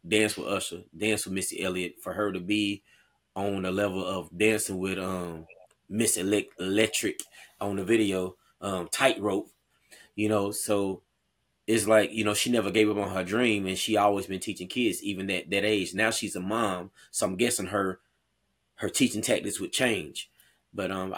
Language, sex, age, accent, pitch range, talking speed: English, male, 20-39, American, 95-125 Hz, 180 wpm